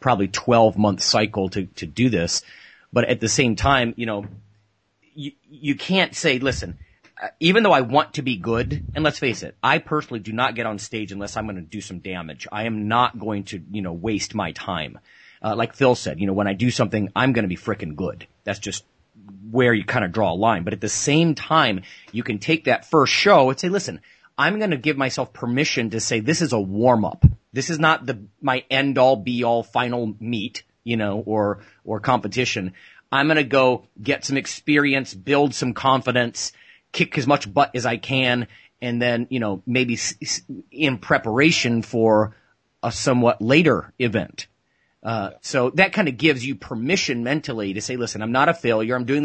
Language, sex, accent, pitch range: English, male, American, 105-140 Hz